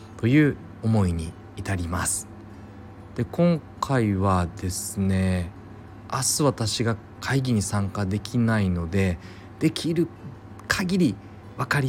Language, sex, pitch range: Japanese, male, 95-130 Hz